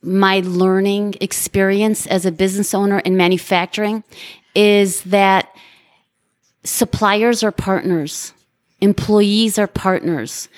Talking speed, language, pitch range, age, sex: 95 wpm, English, 185-215 Hz, 30-49, female